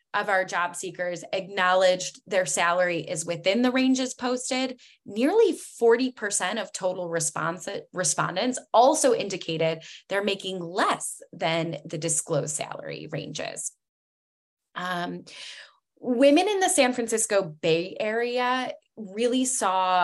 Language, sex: English, female